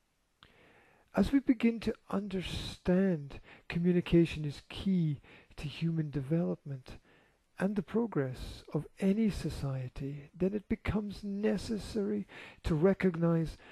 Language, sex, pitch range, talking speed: English, male, 140-185 Hz, 100 wpm